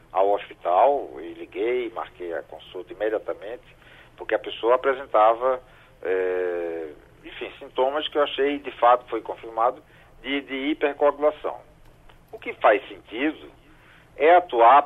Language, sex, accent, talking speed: Portuguese, male, Brazilian, 125 wpm